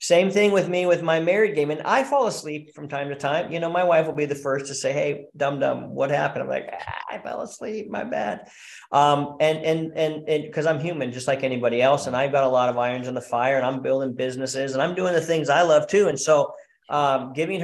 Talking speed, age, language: 260 wpm, 40-59, English